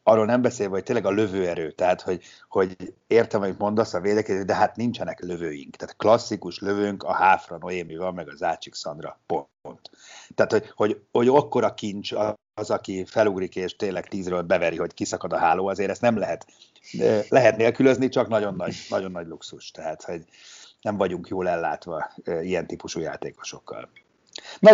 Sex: male